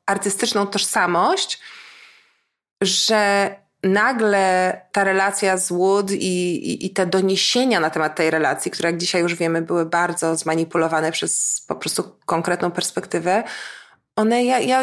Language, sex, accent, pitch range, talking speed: Polish, female, native, 165-195 Hz, 135 wpm